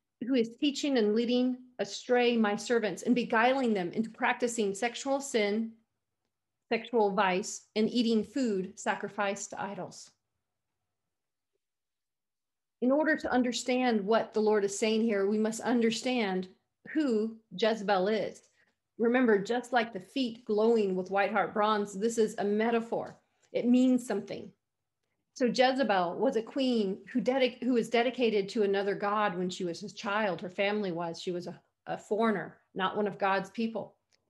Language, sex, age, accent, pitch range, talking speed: English, female, 40-59, American, 200-250 Hz, 150 wpm